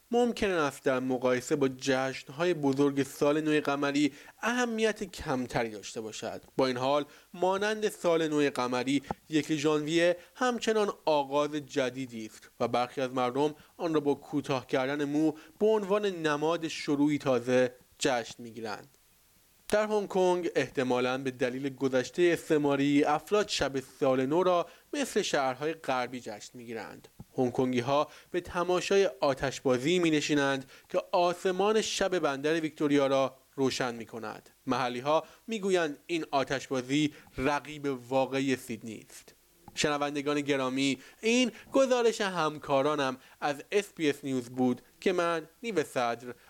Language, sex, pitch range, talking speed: Persian, male, 130-170 Hz, 130 wpm